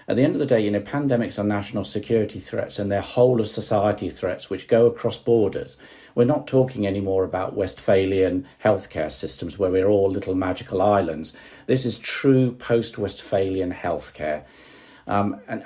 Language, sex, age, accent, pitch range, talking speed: English, male, 50-69, British, 95-120 Hz, 170 wpm